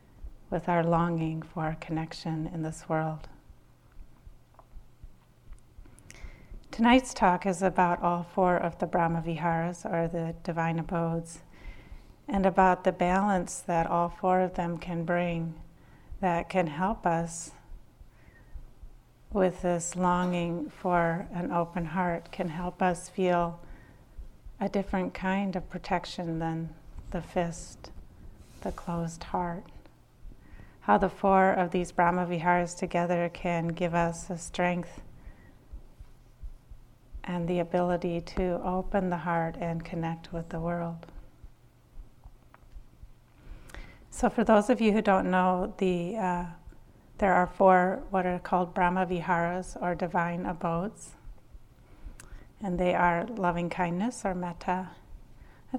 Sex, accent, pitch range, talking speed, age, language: female, American, 170-185 Hz, 120 wpm, 40-59, English